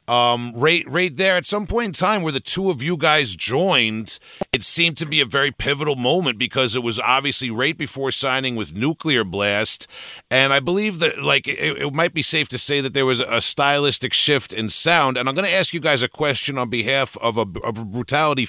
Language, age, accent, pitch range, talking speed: English, 40-59, American, 115-140 Hz, 225 wpm